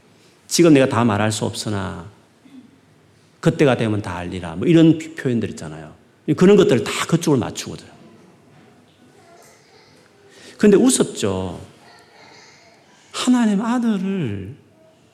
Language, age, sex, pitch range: Korean, 40-59, male, 115-180 Hz